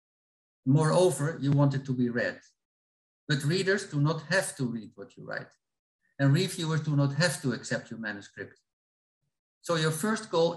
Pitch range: 125-165 Hz